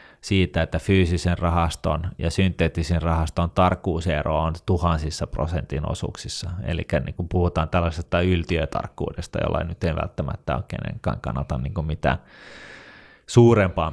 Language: Finnish